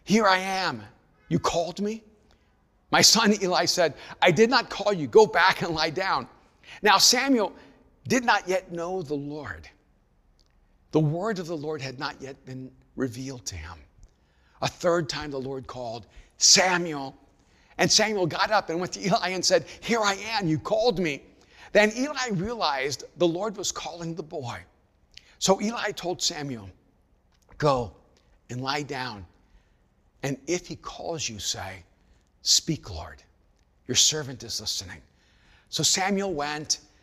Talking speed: 155 wpm